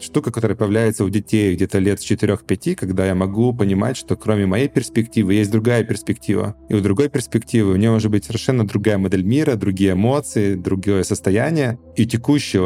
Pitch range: 95-120 Hz